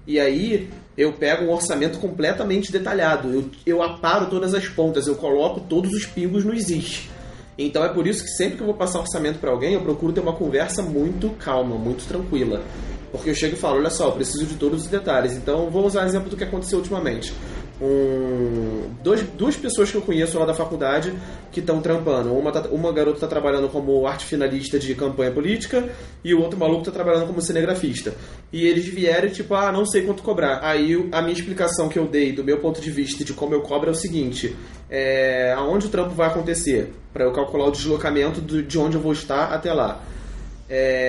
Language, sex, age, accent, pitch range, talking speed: Portuguese, male, 20-39, Brazilian, 140-185 Hz, 215 wpm